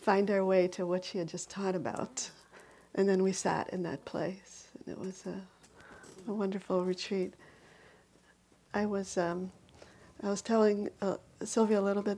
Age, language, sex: 40-59, English, female